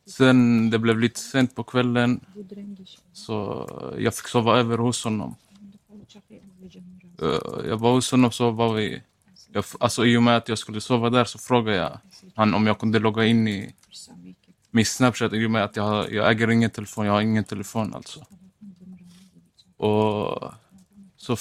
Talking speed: 165 wpm